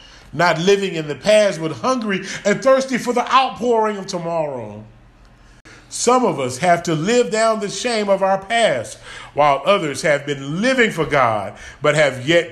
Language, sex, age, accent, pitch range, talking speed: English, male, 40-59, American, 130-195 Hz, 175 wpm